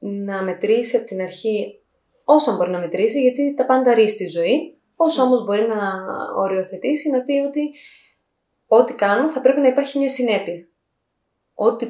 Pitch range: 190-260 Hz